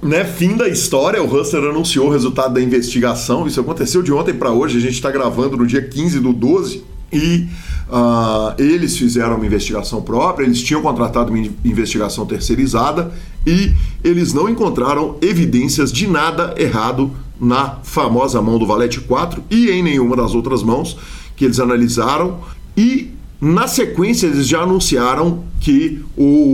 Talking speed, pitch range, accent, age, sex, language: 160 wpm, 115-155 Hz, Brazilian, 40-59, male, Portuguese